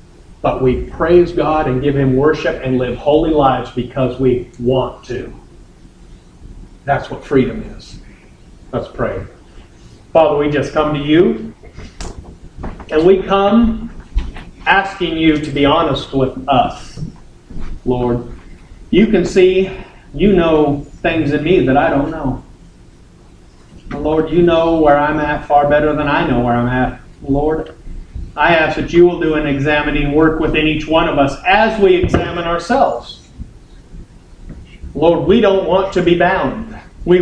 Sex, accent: male, American